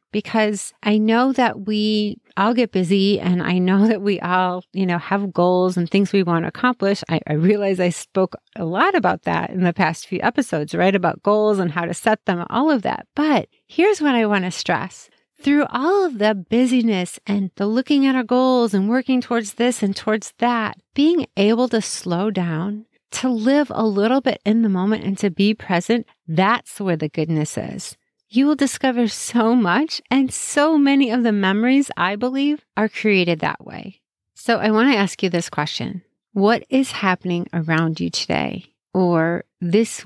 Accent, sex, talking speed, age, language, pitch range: American, female, 195 wpm, 30-49, English, 185-245 Hz